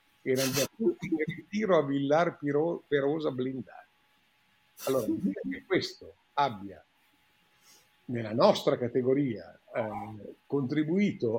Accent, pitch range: native, 125-175 Hz